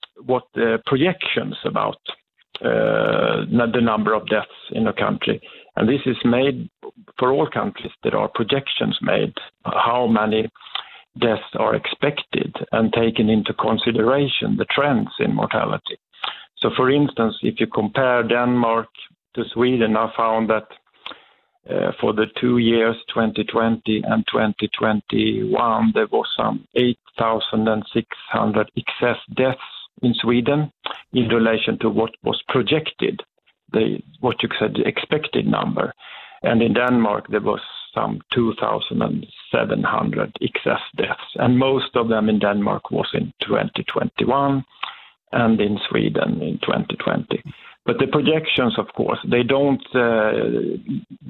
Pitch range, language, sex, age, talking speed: 110-130 Hz, Danish, male, 50-69, 125 wpm